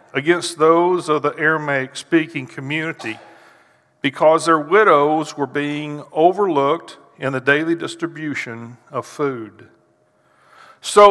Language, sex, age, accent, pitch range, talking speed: English, male, 50-69, American, 140-180 Hz, 110 wpm